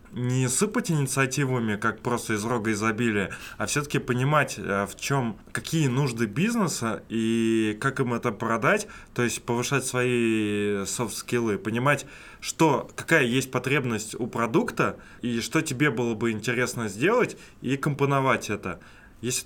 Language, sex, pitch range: Russian, male, 105-135 Hz